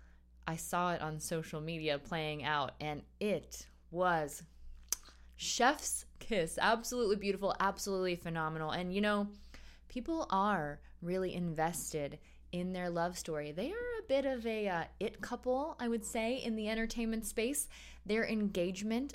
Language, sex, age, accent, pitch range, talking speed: English, female, 20-39, American, 155-215 Hz, 145 wpm